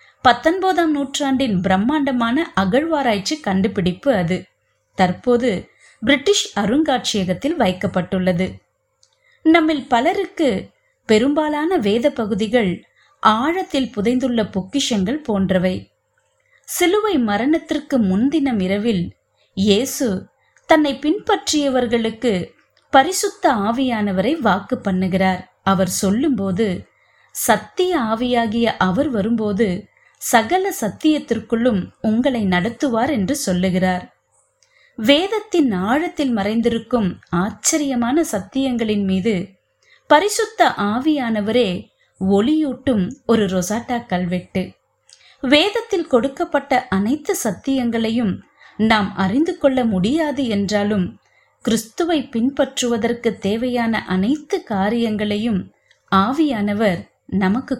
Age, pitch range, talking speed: 30-49, 200-295 Hz, 70 wpm